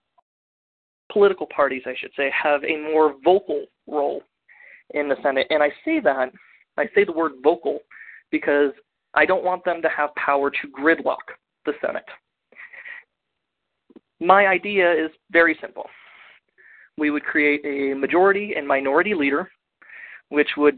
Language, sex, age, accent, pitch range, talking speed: English, male, 20-39, American, 140-185 Hz, 140 wpm